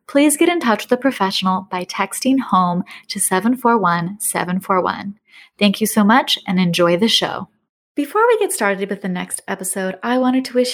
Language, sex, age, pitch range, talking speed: English, female, 20-39, 195-255 Hz, 180 wpm